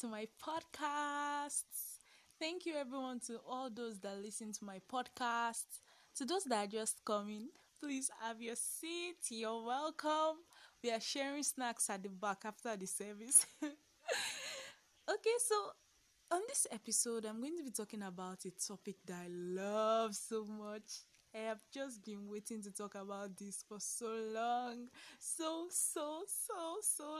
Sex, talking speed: female, 150 wpm